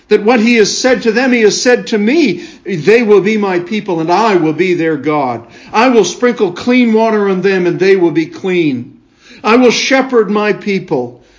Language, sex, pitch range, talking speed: English, male, 130-180 Hz, 210 wpm